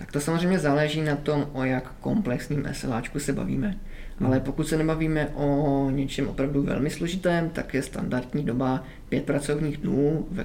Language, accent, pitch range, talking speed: Czech, native, 125-145 Hz, 165 wpm